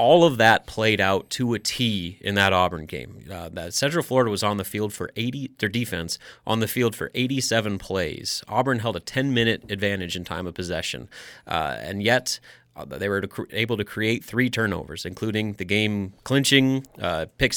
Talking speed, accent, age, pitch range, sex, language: 195 wpm, American, 30-49, 100-120 Hz, male, English